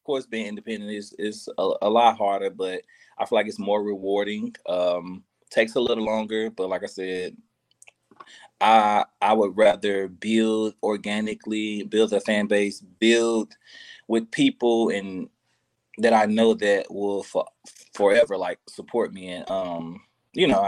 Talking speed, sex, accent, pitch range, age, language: 155 wpm, male, American, 100-130 Hz, 20-39, English